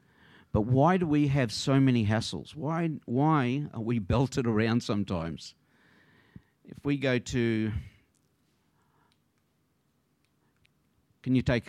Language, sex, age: English, male, 50-69